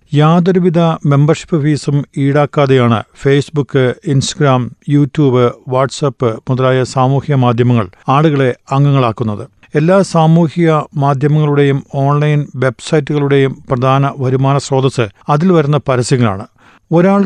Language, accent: Malayalam, native